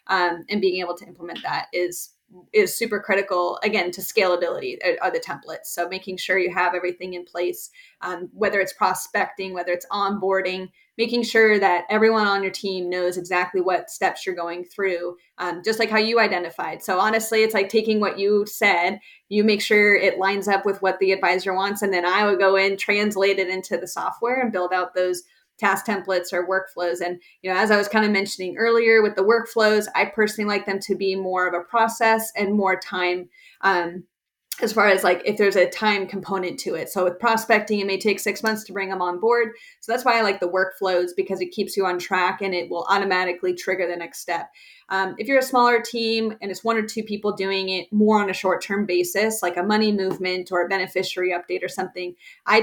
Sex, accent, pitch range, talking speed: female, American, 180-215 Hz, 220 wpm